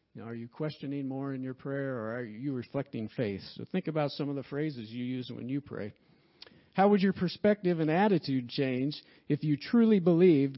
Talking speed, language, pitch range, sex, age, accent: 200 wpm, English, 115-145 Hz, male, 50-69, American